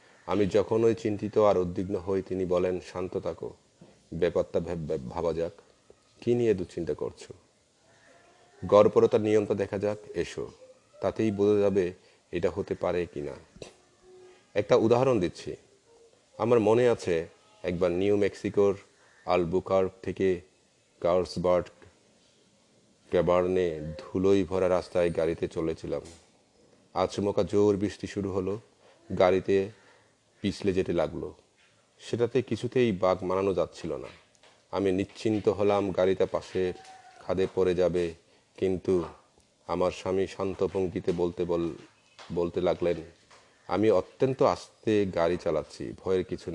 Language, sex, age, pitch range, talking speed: Bengali, male, 40-59, 90-110 Hz, 95 wpm